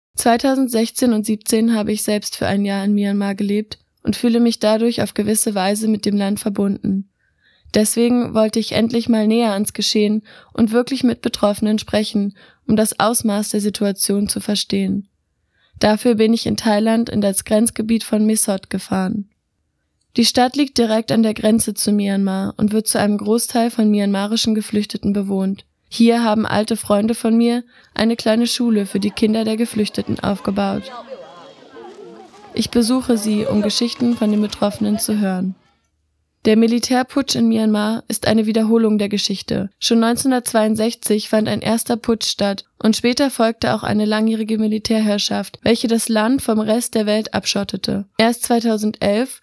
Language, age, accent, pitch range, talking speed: German, 20-39, German, 210-230 Hz, 160 wpm